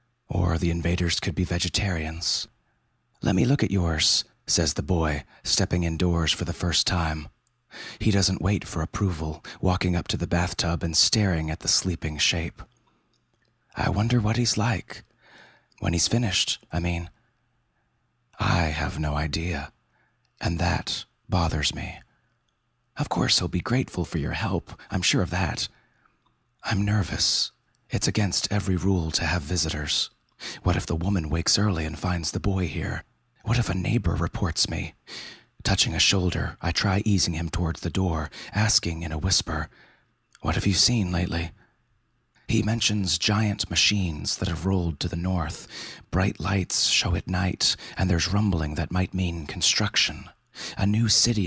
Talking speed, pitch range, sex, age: 160 wpm, 85-100 Hz, male, 30-49